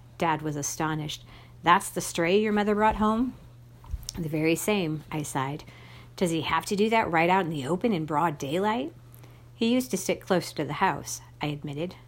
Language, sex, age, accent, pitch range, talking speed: English, female, 50-69, American, 145-185 Hz, 195 wpm